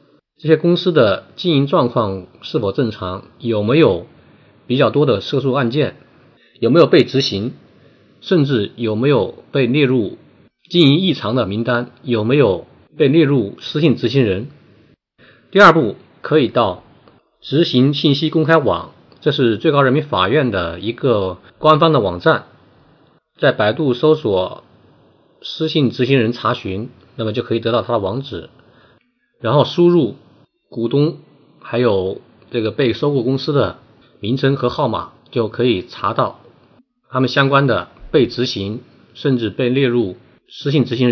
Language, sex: Chinese, male